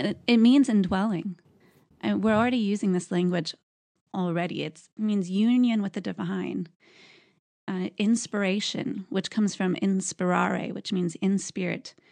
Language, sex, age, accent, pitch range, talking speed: English, female, 20-39, American, 180-210 Hz, 130 wpm